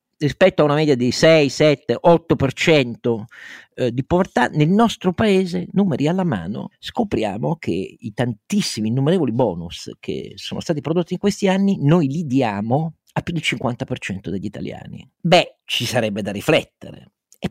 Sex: male